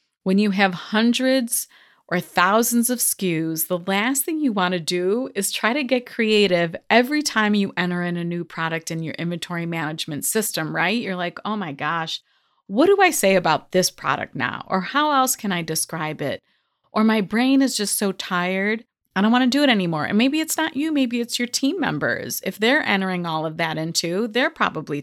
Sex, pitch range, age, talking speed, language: female, 175-240 Hz, 30-49, 210 wpm, English